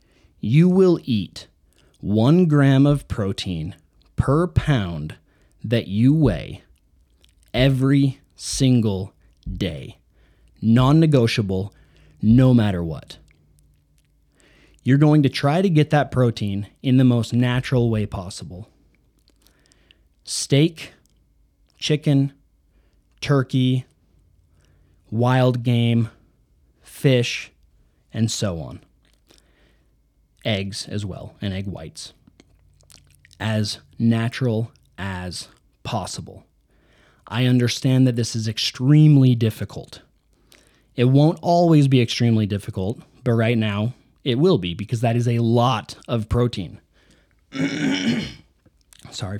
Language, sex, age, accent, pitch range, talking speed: English, male, 30-49, American, 95-130 Hz, 95 wpm